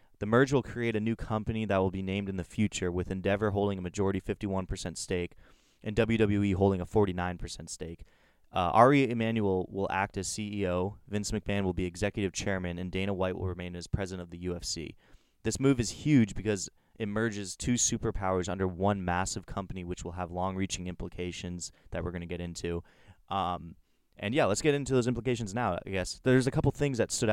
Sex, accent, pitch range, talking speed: male, American, 90-105 Hz, 200 wpm